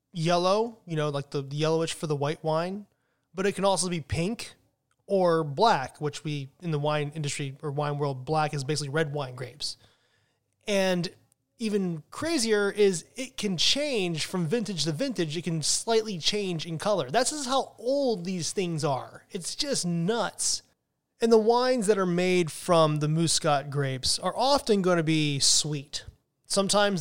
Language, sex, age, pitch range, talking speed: English, male, 20-39, 145-200 Hz, 170 wpm